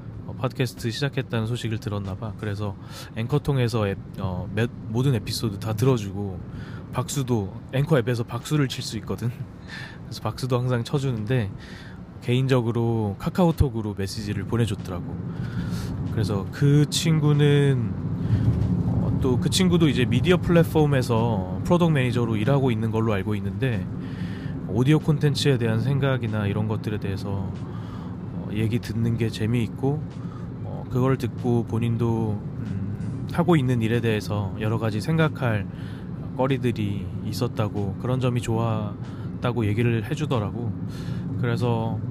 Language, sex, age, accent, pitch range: Korean, male, 20-39, native, 105-130 Hz